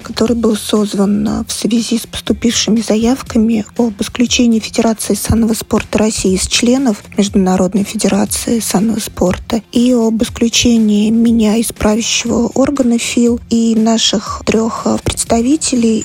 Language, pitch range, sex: Russian, 205-235 Hz, female